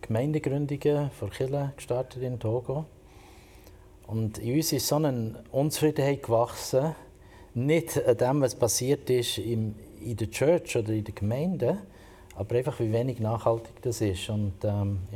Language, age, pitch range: German, 50-69, 100-125 Hz